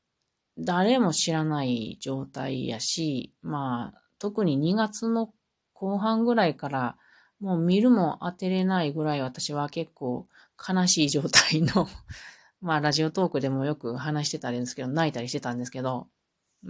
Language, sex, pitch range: Japanese, female, 140-195 Hz